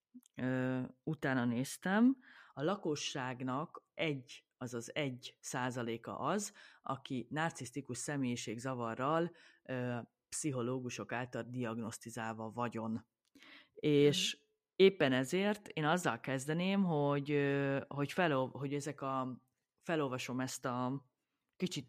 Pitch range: 125-160 Hz